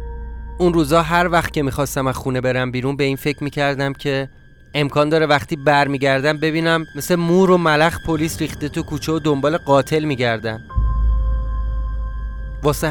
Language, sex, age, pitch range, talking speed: Persian, male, 30-49, 125-155 Hz, 165 wpm